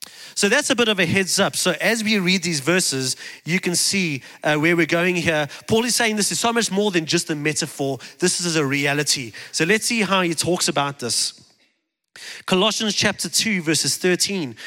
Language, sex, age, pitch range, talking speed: English, male, 30-49, 160-215 Hz, 210 wpm